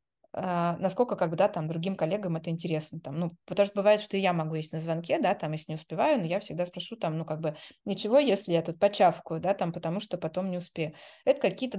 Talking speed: 230 wpm